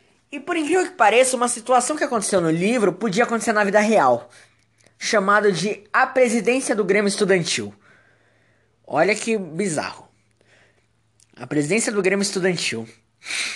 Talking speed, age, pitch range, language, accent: 135 wpm, 10-29, 135-205 Hz, Portuguese, Brazilian